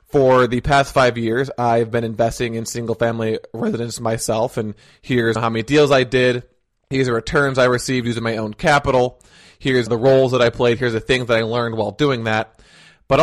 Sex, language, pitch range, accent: male, English, 115-130 Hz, American